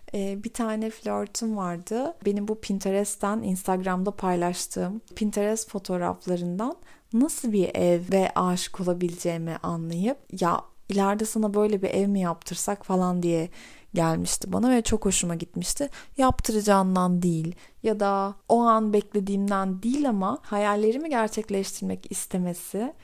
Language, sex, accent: Turkish, female, native